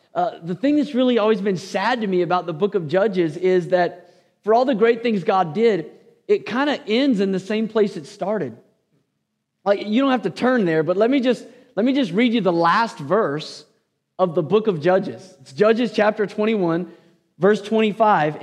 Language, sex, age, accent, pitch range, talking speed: English, male, 40-59, American, 180-235 Hz, 210 wpm